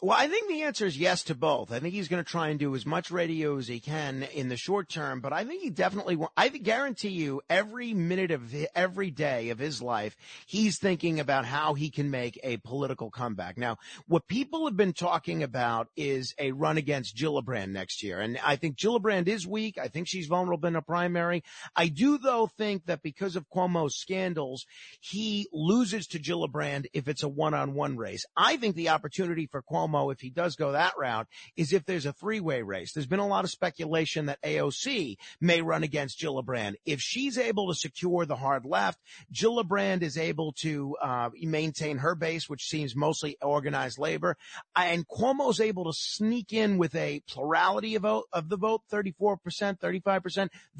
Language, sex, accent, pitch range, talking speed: English, male, American, 145-195 Hz, 195 wpm